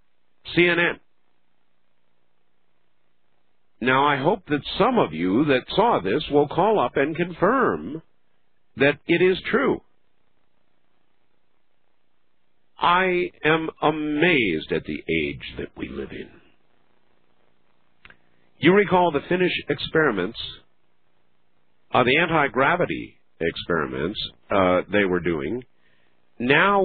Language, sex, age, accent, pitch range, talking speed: English, male, 50-69, American, 105-160 Hz, 100 wpm